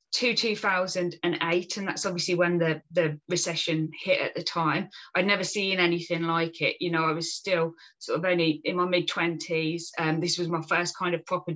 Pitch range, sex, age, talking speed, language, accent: 160-180 Hz, female, 20-39, 200 wpm, English, British